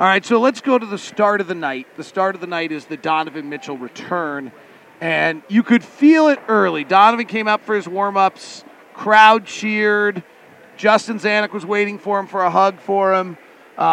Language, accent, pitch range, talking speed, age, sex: English, American, 190-230 Hz, 210 wpm, 40-59, male